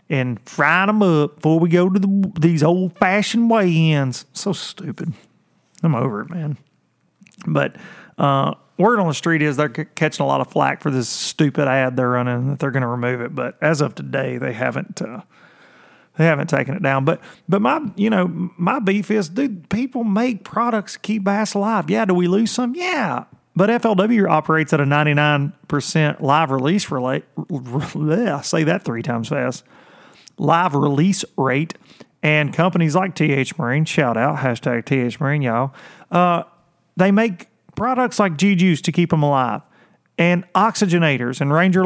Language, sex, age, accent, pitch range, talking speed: English, male, 30-49, American, 145-195 Hz, 175 wpm